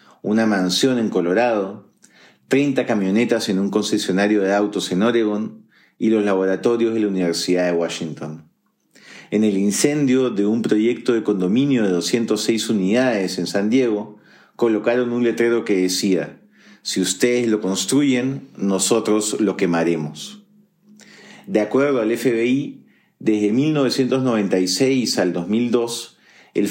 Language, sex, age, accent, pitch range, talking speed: Spanish, male, 40-59, Argentinian, 95-125 Hz, 125 wpm